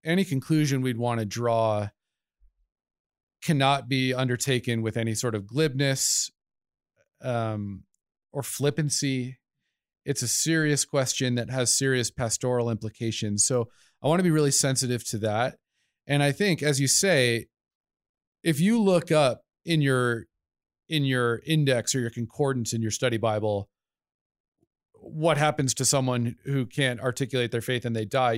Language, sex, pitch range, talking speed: English, male, 115-145 Hz, 145 wpm